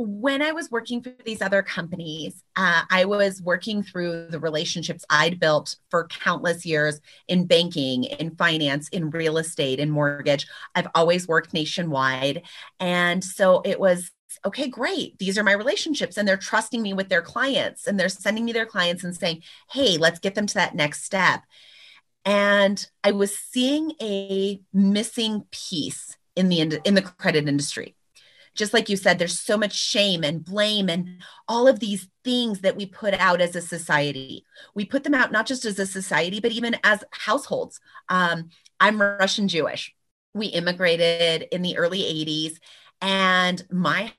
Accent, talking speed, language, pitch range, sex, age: American, 170 wpm, English, 165-205 Hz, female, 30-49